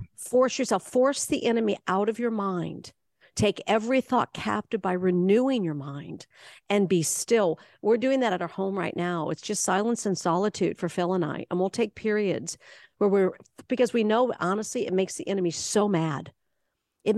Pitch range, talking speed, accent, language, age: 175-215 Hz, 190 wpm, American, English, 50-69